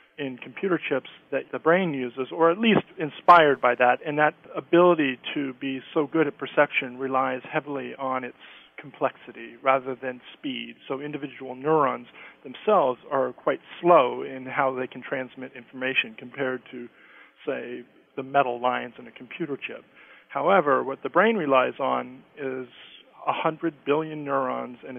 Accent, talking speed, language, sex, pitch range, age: American, 155 wpm, English, male, 125-150 Hz, 40-59